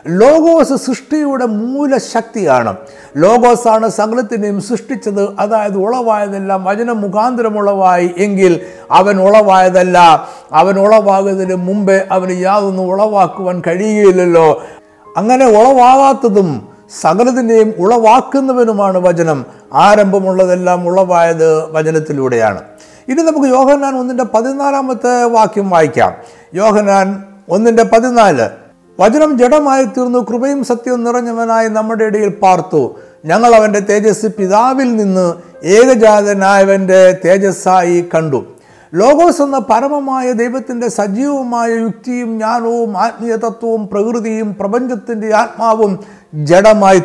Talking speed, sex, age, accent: 85 wpm, male, 60-79, native